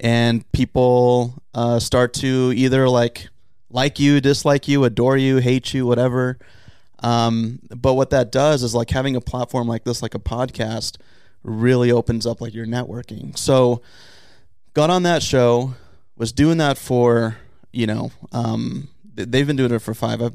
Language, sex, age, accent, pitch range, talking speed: English, male, 20-39, American, 115-130 Hz, 165 wpm